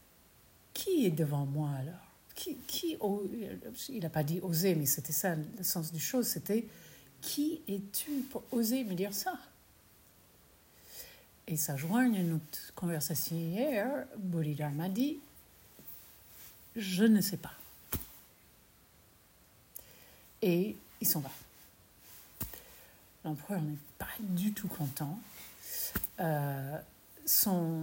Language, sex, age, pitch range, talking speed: French, female, 60-79, 150-230 Hz, 135 wpm